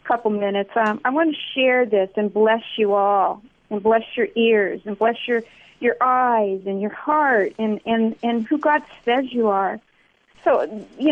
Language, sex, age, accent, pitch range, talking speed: English, female, 50-69, American, 215-280 Hz, 185 wpm